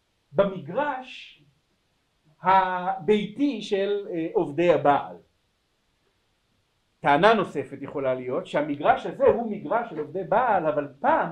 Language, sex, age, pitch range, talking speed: Hebrew, male, 50-69, 145-215 Hz, 95 wpm